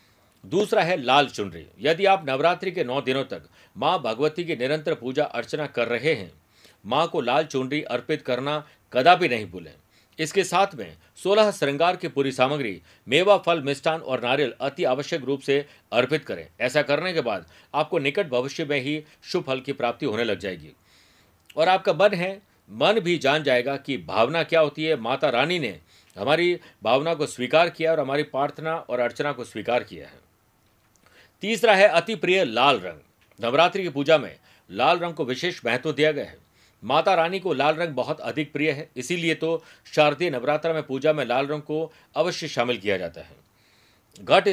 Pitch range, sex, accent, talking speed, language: 125-165 Hz, male, native, 185 wpm, Hindi